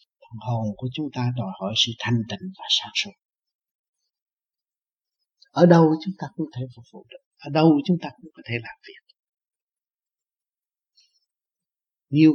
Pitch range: 120-160 Hz